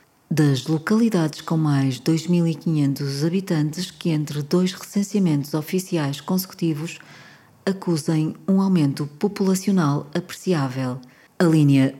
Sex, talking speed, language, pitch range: female, 95 wpm, Portuguese, 140-180 Hz